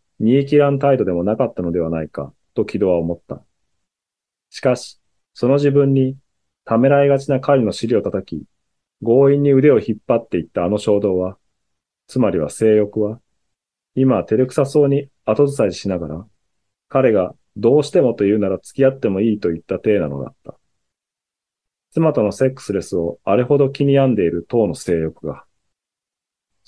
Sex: male